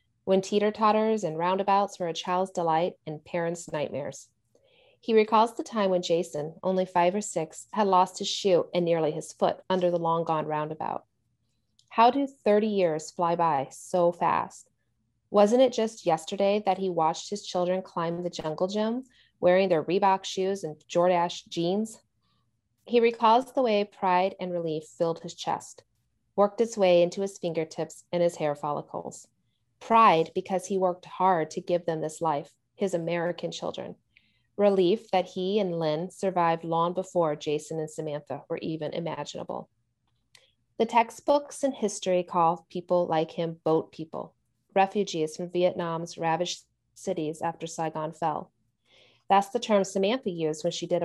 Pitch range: 160-195 Hz